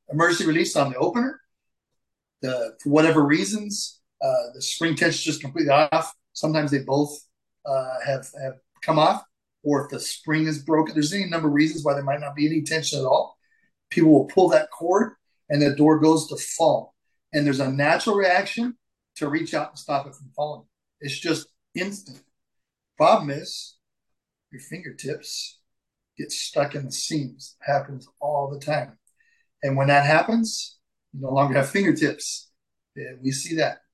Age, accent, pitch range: 40-59, American, 140-175 Hz